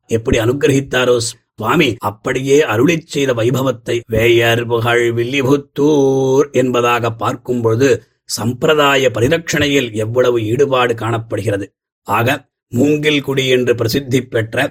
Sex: male